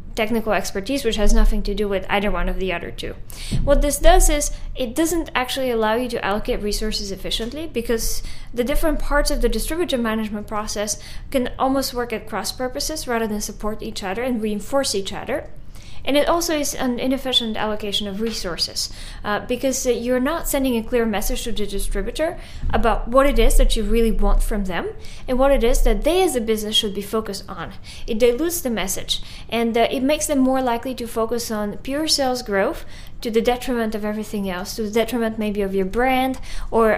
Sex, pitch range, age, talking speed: female, 210-265 Hz, 20-39, 205 wpm